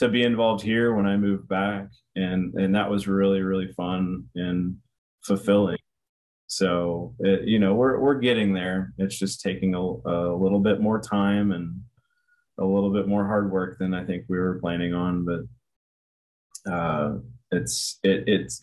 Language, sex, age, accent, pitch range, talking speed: English, male, 20-39, American, 90-110 Hz, 165 wpm